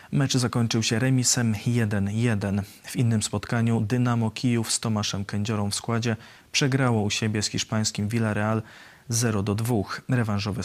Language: Polish